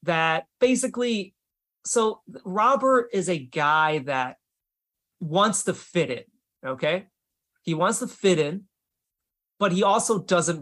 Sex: male